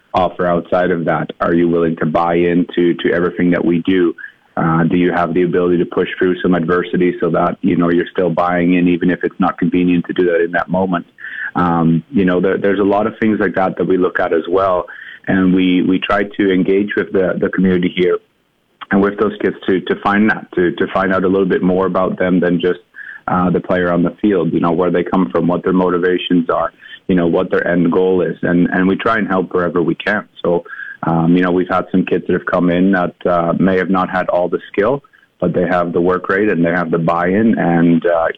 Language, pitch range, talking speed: English, 85-95 Hz, 245 wpm